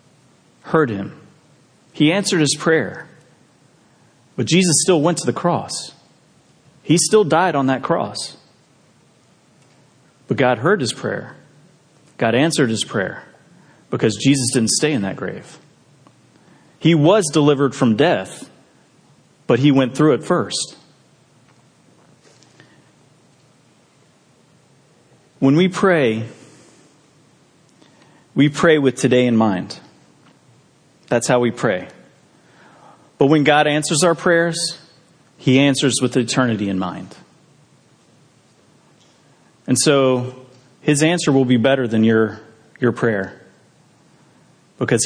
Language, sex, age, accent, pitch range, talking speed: English, male, 40-59, American, 120-155 Hz, 110 wpm